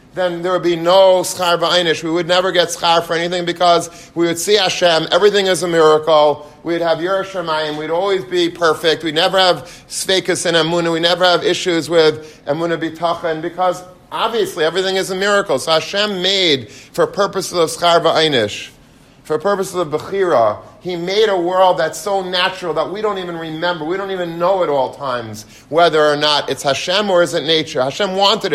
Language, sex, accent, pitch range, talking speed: English, male, American, 155-190 Hz, 190 wpm